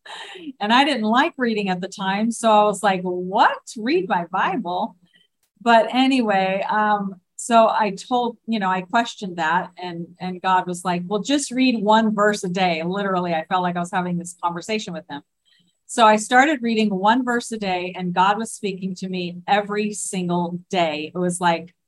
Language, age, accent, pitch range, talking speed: English, 40-59, American, 180-220 Hz, 190 wpm